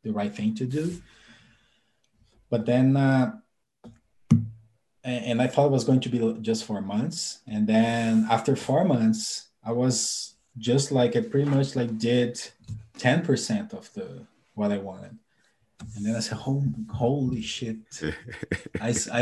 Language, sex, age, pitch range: English, male, 20-39, 115-145 Hz